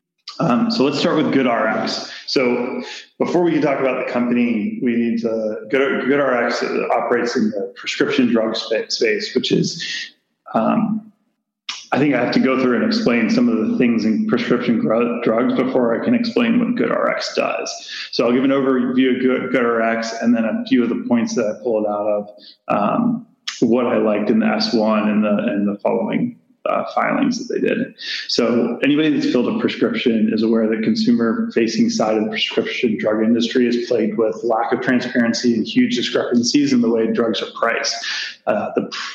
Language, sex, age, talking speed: English, male, 30-49, 180 wpm